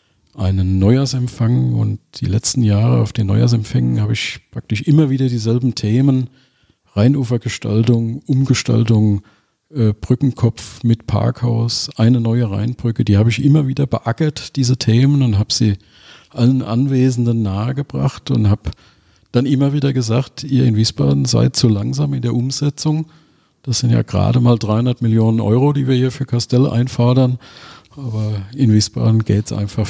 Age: 40-59